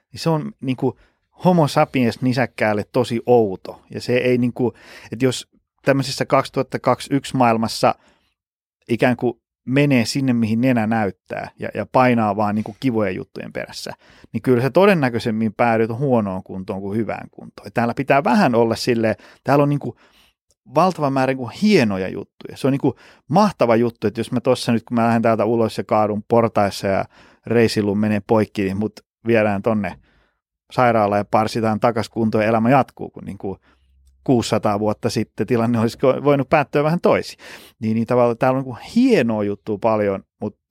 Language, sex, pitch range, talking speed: Finnish, male, 105-130 Hz, 170 wpm